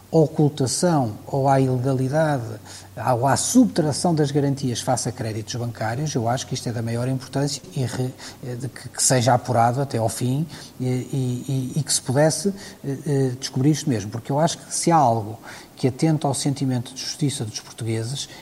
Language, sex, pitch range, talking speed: Portuguese, male, 120-150 Hz, 170 wpm